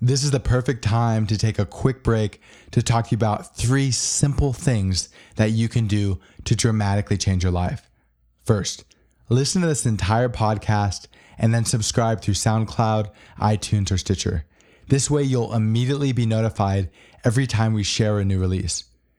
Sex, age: male, 20-39